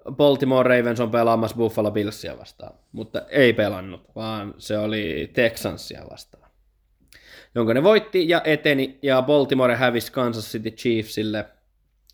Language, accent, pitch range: Finnish, native, 110-140 Hz